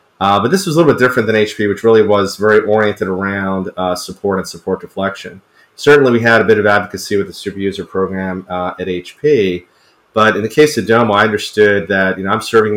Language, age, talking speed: English, 30-49, 230 wpm